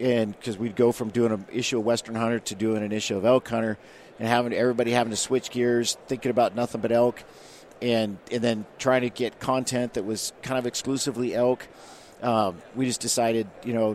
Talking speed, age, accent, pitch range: 210 wpm, 50-69, American, 110-125 Hz